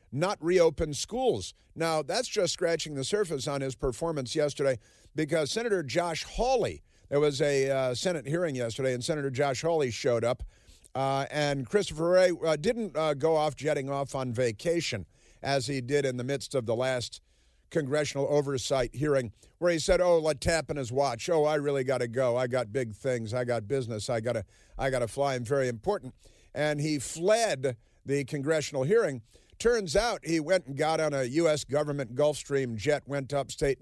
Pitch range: 125-155 Hz